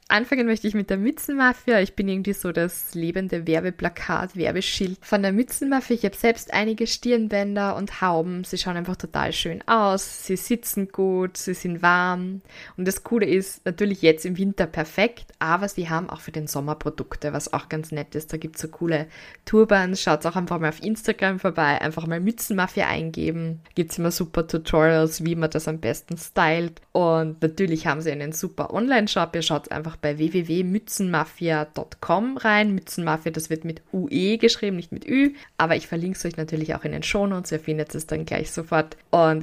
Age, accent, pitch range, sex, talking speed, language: 20-39, German, 160-200 Hz, female, 190 wpm, German